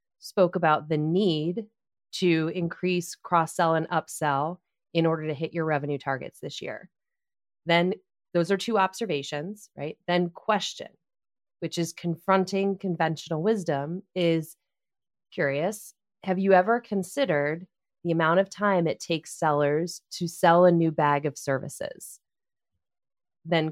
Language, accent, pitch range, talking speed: English, American, 160-195 Hz, 135 wpm